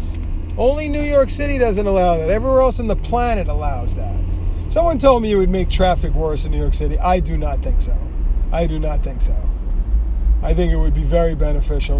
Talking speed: 215 wpm